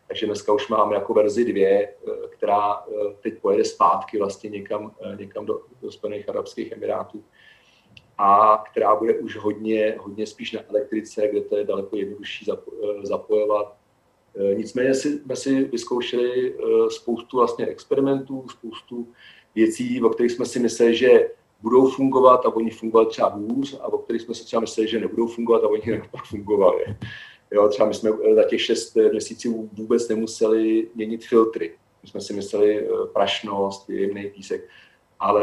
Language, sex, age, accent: Czech, male, 40-59, native